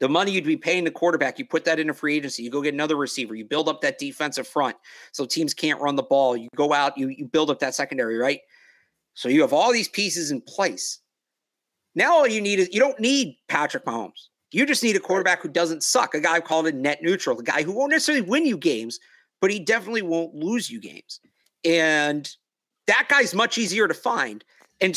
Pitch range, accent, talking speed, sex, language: 150-225 Hz, American, 230 wpm, male, English